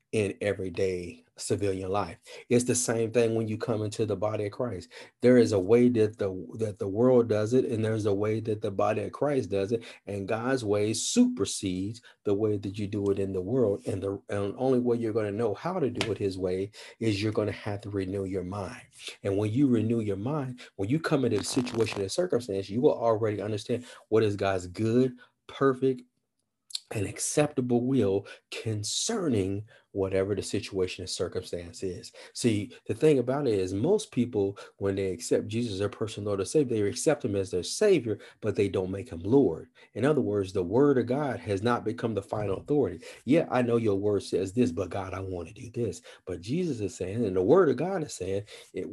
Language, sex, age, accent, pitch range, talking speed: English, male, 40-59, American, 100-125 Hz, 215 wpm